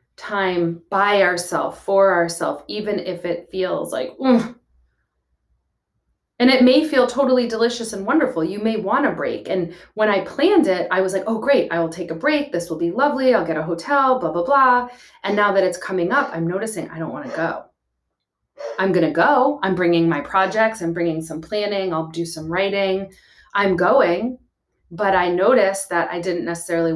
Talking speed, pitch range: 195 wpm, 170-215 Hz